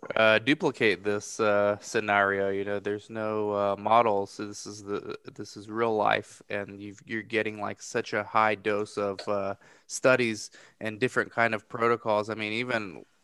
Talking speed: 175 wpm